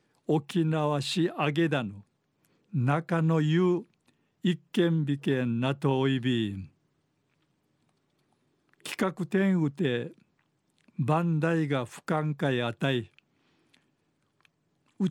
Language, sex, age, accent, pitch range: Japanese, male, 50-69, native, 140-165 Hz